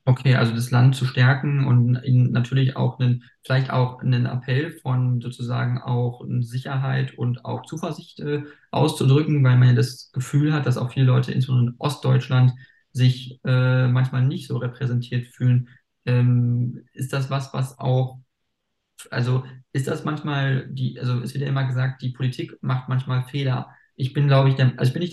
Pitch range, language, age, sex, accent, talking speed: 125-135 Hz, German, 20-39, male, German, 170 wpm